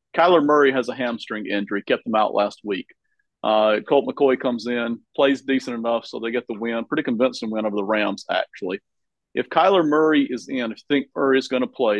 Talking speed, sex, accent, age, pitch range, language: 215 wpm, male, American, 40-59, 120-140 Hz, English